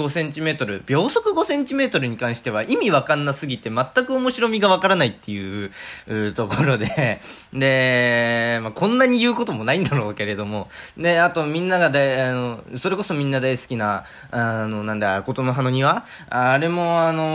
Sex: male